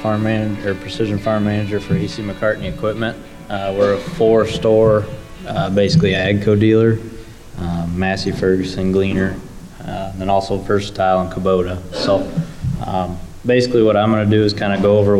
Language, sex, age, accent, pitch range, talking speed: English, male, 20-39, American, 95-110 Hz, 160 wpm